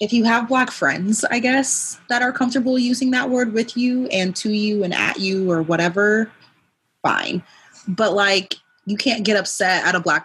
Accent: American